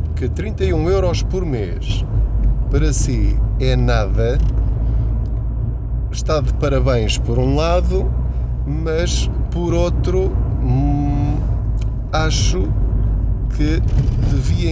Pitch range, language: 85-125 Hz, Portuguese